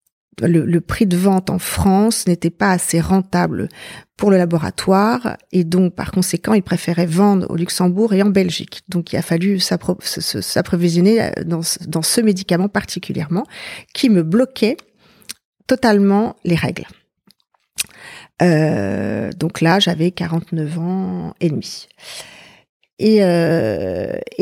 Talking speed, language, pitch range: 130 wpm, French, 170-210 Hz